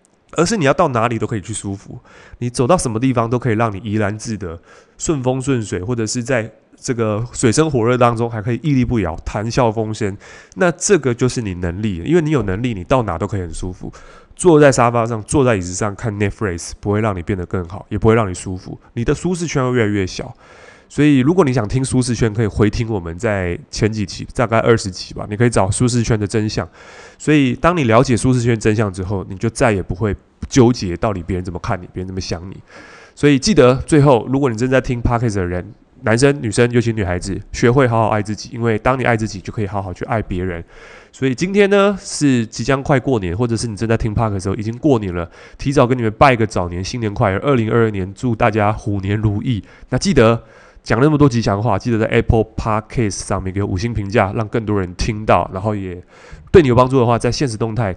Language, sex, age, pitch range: Chinese, male, 20-39, 100-125 Hz